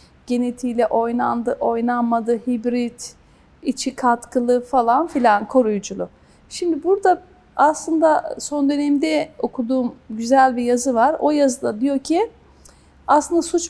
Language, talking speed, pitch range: Turkish, 110 wpm, 240-315 Hz